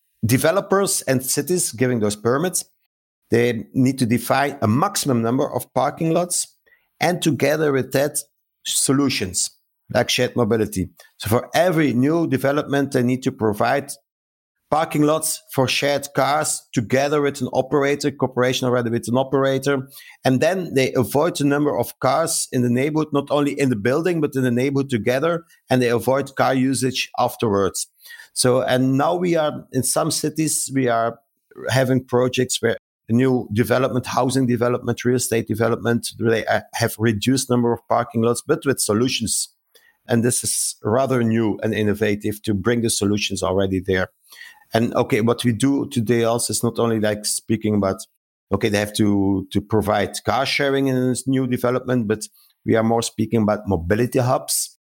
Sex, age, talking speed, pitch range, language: male, 50-69, 165 wpm, 115-140 Hz, English